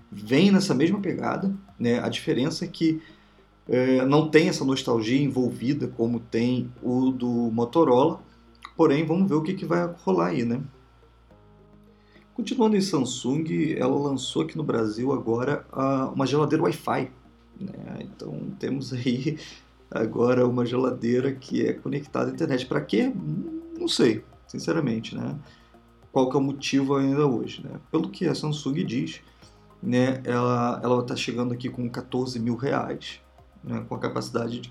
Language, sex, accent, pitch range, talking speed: Portuguese, male, Brazilian, 120-155 Hz, 155 wpm